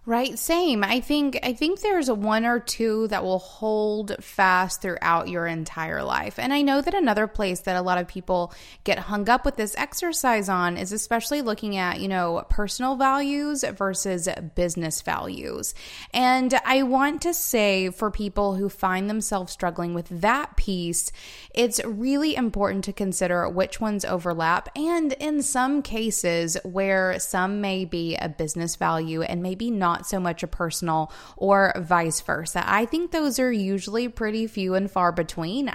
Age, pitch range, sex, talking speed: 20-39, 170-220 Hz, female, 170 wpm